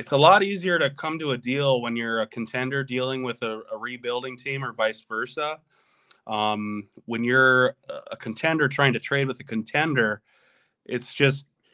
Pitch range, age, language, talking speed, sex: 120-145 Hz, 20-39, English, 180 wpm, male